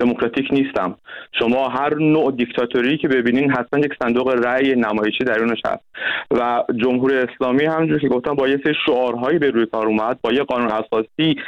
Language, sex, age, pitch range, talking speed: Persian, male, 30-49, 115-145 Hz, 170 wpm